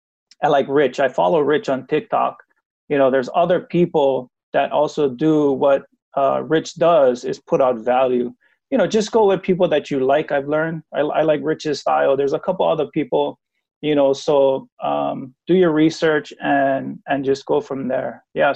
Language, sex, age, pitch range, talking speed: English, male, 30-49, 135-165 Hz, 190 wpm